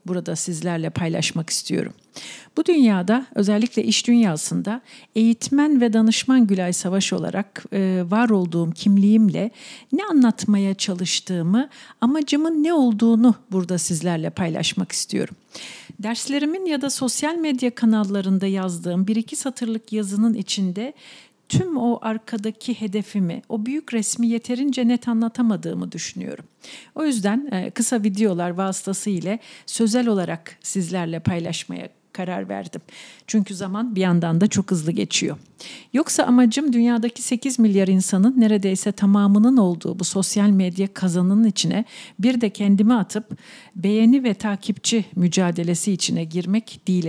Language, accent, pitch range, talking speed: Turkish, native, 185-240 Hz, 120 wpm